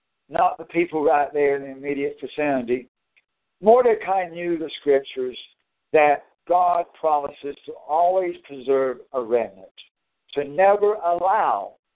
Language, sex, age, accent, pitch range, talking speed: English, male, 60-79, American, 135-195 Hz, 120 wpm